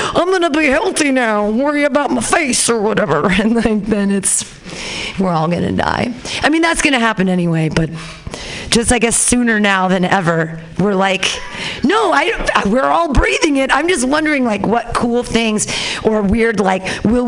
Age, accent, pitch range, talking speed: 40-59, American, 190-255 Hz, 190 wpm